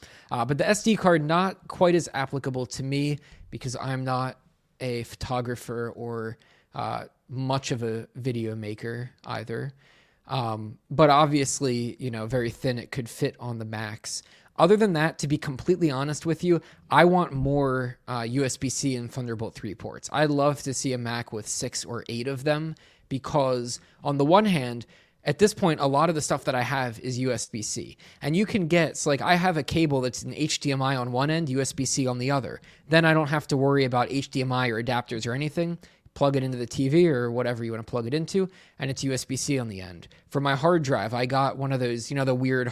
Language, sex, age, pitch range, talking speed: English, male, 20-39, 120-150 Hz, 210 wpm